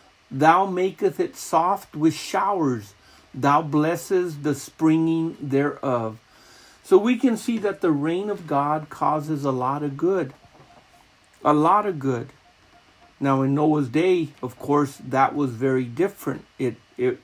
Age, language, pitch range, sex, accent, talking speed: 50-69, English, 135-170 Hz, male, American, 145 wpm